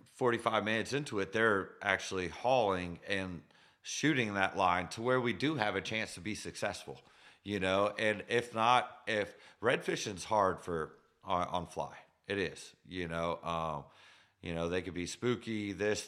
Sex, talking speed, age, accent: male, 170 wpm, 30-49, American